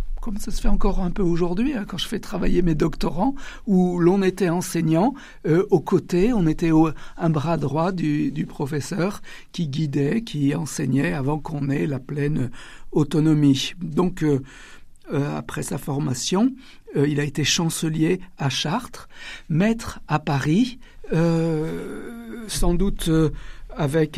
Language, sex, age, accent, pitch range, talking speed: French, male, 60-79, French, 145-190 Hz, 150 wpm